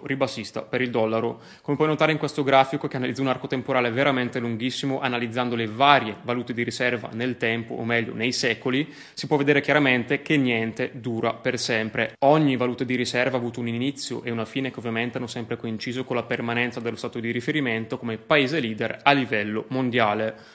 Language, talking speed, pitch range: Italian, 195 wpm, 120-135 Hz